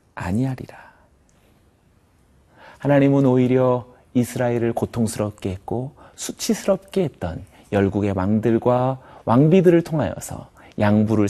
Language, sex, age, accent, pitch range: Korean, male, 40-59, native, 95-135 Hz